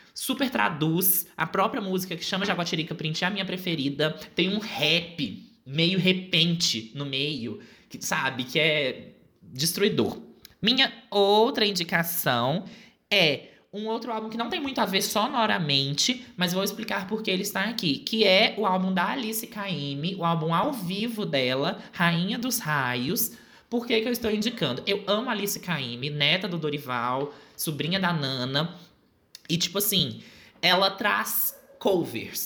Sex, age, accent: male, 20-39, Brazilian